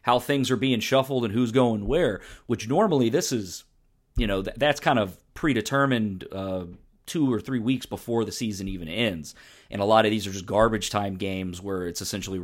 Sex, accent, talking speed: male, American, 205 wpm